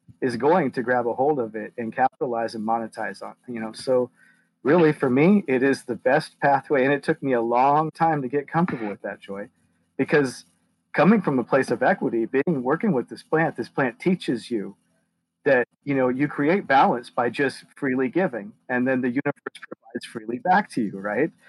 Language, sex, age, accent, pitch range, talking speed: English, male, 40-59, American, 120-155 Hz, 205 wpm